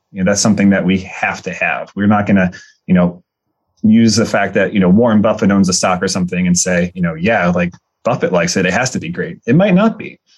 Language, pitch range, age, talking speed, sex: English, 95-115 Hz, 30-49, 265 wpm, male